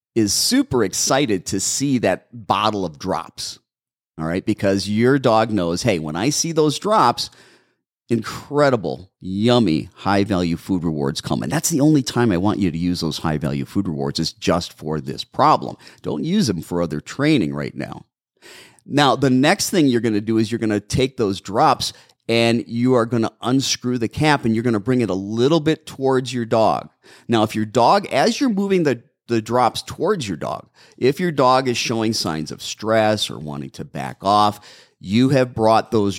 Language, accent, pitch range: English, American, 90-125 Hz